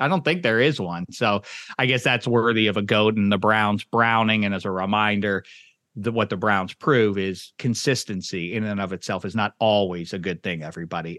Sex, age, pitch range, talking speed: male, 40-59, 110-175 Hz, 210 wpm